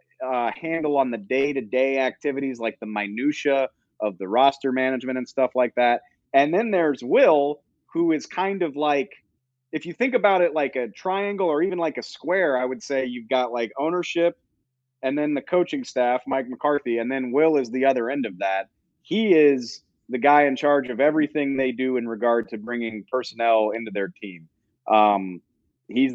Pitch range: 120-145 Hz